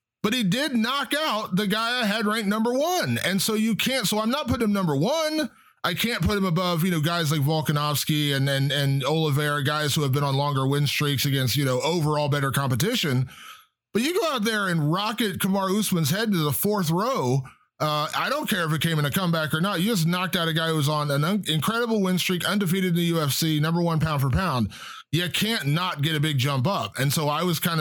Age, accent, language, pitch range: 30-49, American, English, 145-200 Hz